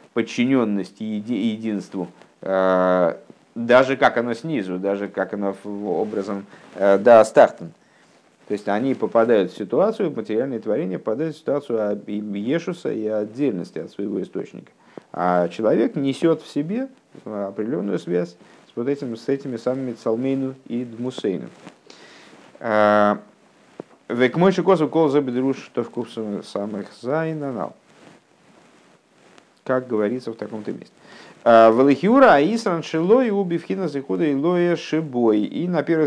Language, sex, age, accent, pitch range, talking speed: Russian, male, 50-69, native, 105-140 Hz, 115 wpm